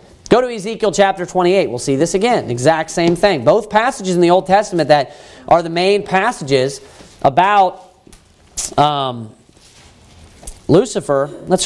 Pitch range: 165-220 Hz